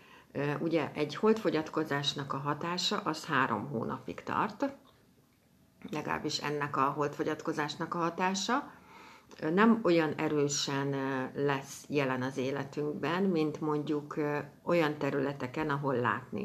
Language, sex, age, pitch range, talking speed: Hungarian, female, 60-79, 140-180 Hz, 100 wpm